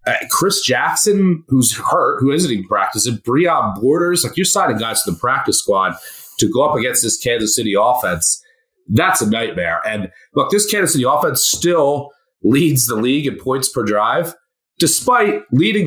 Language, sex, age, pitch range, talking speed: English, male, 30-49, 110-175 Hz, 175 wpm